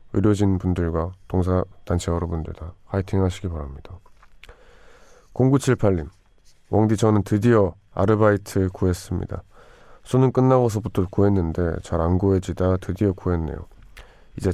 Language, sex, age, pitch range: Korean, male, 20-39, 85-105 Hz